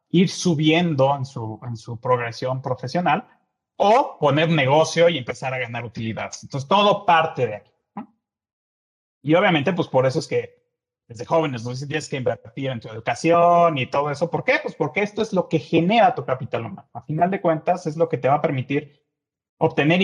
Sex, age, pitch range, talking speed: male, 30-49, 130-175 Hz, 195 wpm